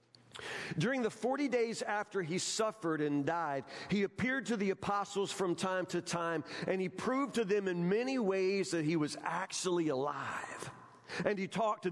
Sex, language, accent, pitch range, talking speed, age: male, English, American, 165-210 Hz, 175 wpm, 40-59